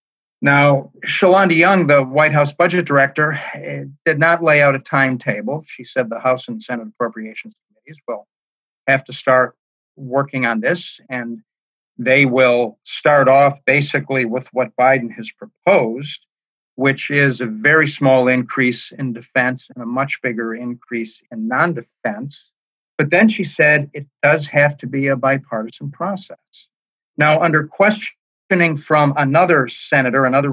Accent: American